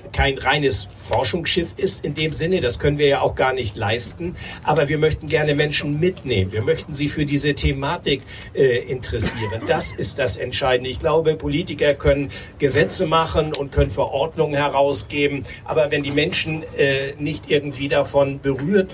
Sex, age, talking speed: male, 60-79, 165 wpm